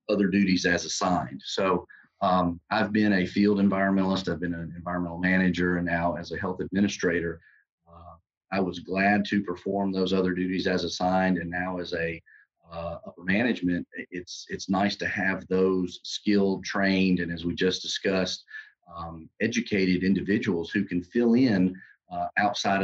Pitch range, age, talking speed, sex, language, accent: 85-95 Hz, 40-59, 165 wpm, male, English, American